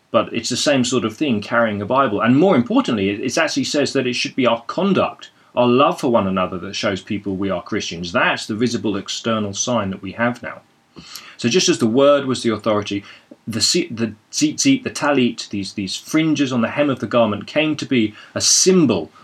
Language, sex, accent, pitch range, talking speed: English, male, British, 105-140 Hz, 215 wpm